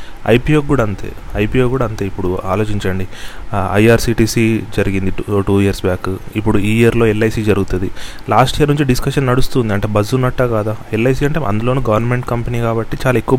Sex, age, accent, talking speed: male, 30-49, native, 155 wpm